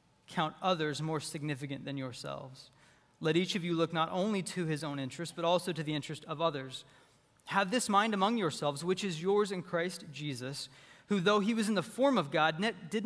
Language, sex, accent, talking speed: English, male, American, 205 wpm